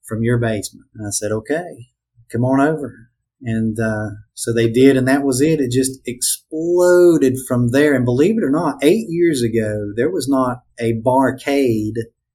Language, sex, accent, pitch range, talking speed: English, male, American, 110-130 Hz, 180 wpm